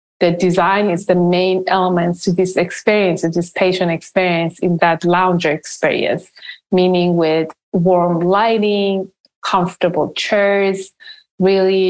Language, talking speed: English, 120 wpm